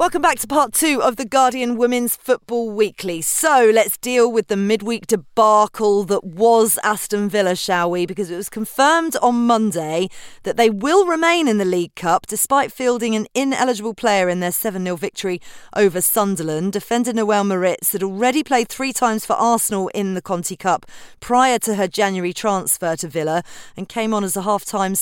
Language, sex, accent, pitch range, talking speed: English, female, British, 185-235 Hz, 180 wpm